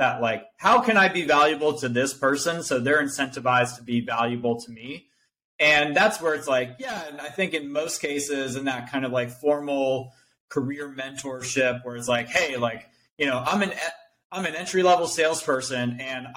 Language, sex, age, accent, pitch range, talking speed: English, male, 30-49, American, 125-150 Hz, 190 wpm